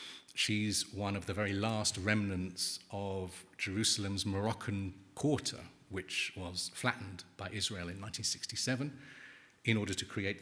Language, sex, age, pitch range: German, male, 40-59, 95-120 Hz